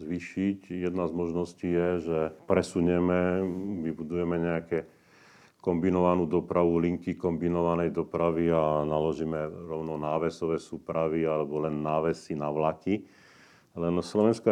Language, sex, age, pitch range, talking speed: Slovak, male, 40-59, 80-95 Hz, 110 wpm